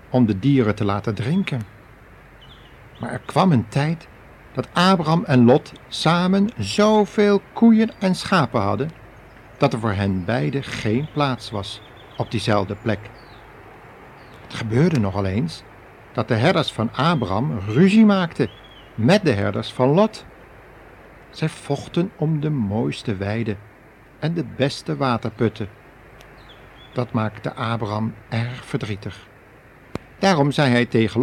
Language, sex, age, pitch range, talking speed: Dutch, male, 60-79, 110-155 Hz, 130 wpm